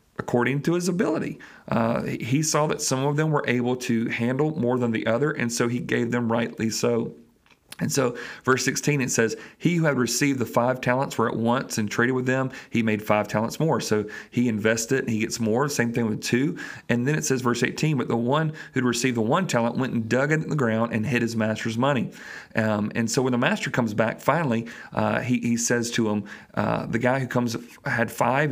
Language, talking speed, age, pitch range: English, 230 wpm, 40-59, 115-145 Hz